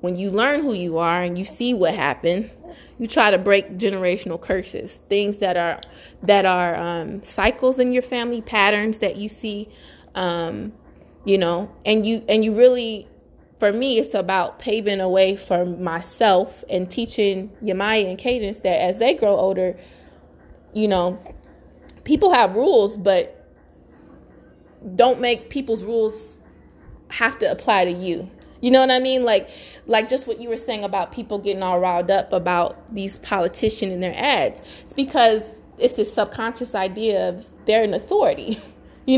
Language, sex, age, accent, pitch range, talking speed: English, female, 20-39, American, 190-235 Hz, 165 wpm